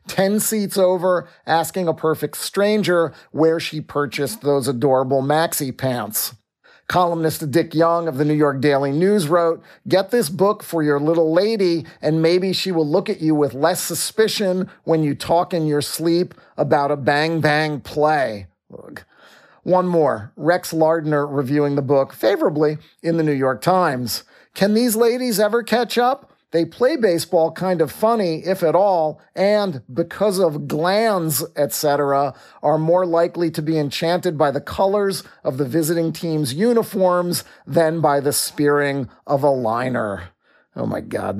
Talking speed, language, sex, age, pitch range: 155 wpm, English, male, 40-59, 145-180 Hz